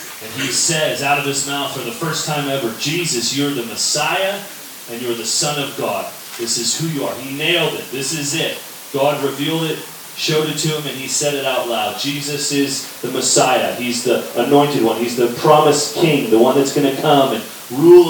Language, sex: English, male